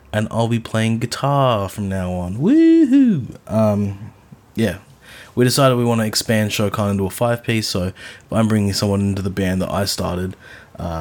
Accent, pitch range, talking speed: Australian, 95-115 Hz, 180 wpm